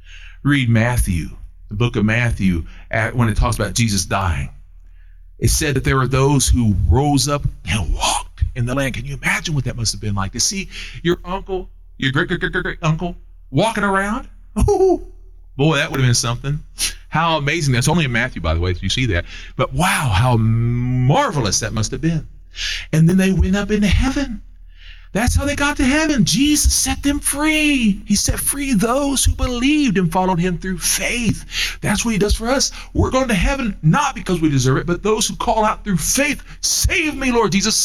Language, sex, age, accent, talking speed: English, male, 40-59, American, 210 wpm